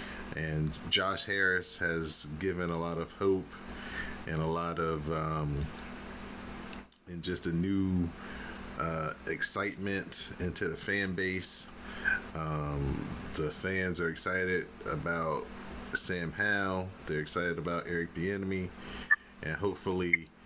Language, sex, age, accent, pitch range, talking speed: English, male, 30-49, American, 80-95 Hz, 115 wpm